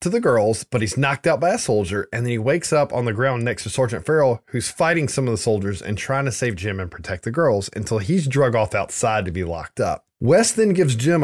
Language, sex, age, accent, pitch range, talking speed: English, male, 20-39, American, 105-140 Hz, 265 wpm